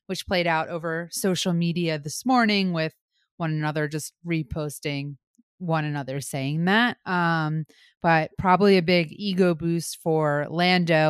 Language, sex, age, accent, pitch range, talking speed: English, female, 20-39, American, 165-205 Hz, 140 wpm